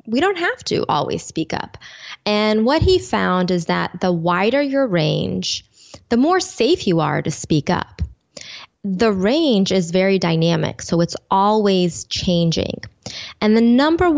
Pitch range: 175-230 Hz